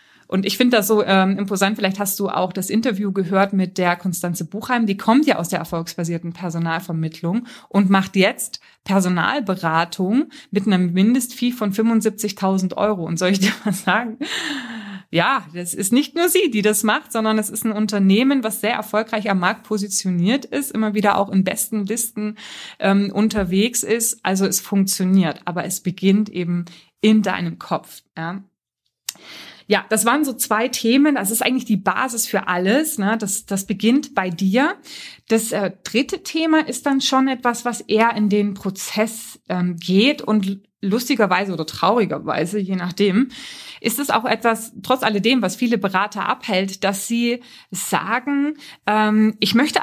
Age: 20-39